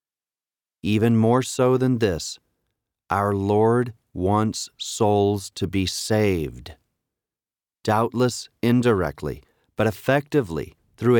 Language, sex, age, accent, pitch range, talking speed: English, male, 40-59, American, 100-130 Hz, 90 wpm